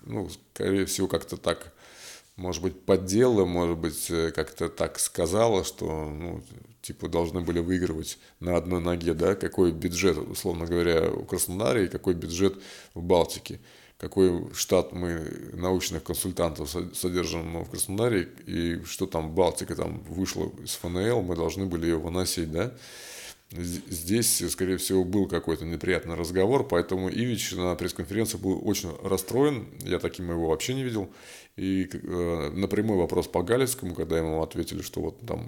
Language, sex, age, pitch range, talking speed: Russian, male, 20-39, 85-95 Hz, 150 wpm